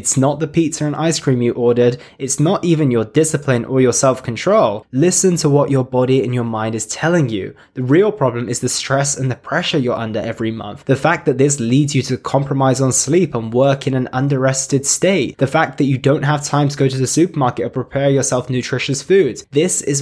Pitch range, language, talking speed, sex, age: 120-155 Hz, English, 230 wpm, male, 20-39